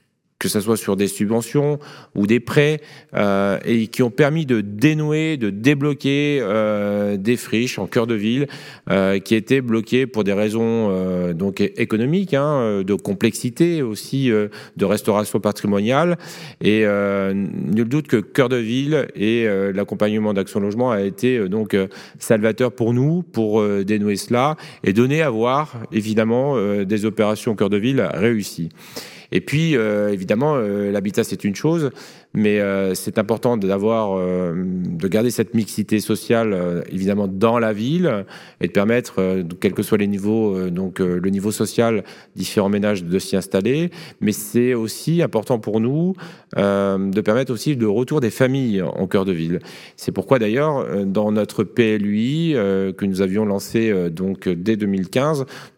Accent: French